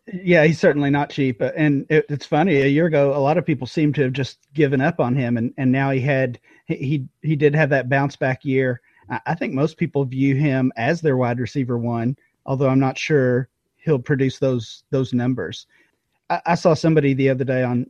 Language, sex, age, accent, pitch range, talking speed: English, male, 40-59, American, 130-155 Hz, 220 wpm